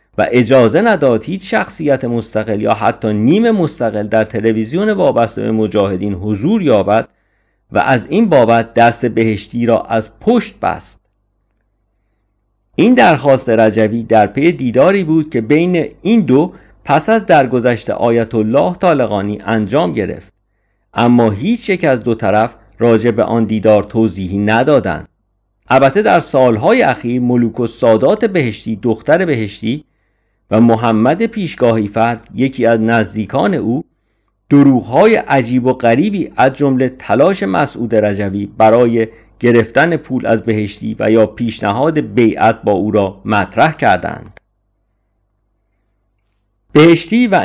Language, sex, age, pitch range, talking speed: Persian, male, 50-69, 105-135 Hz, 125 wpm